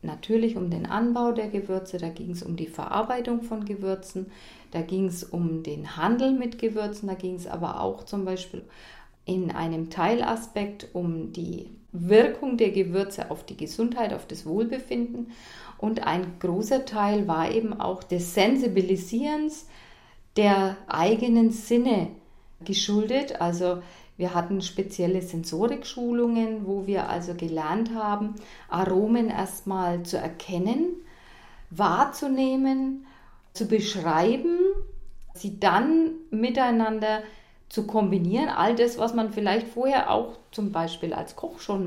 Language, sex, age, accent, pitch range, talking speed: German, female, 40-59, German, 185-235 Hz, 130 wpm